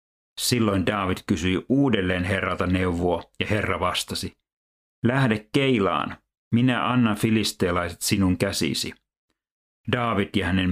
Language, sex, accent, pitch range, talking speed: Finnish, male, native, 95-115 Hz, 105 wpm